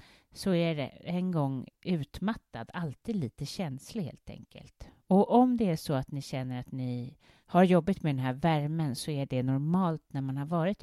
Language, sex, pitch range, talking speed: English, female, 135-190 Hz, 195 wpm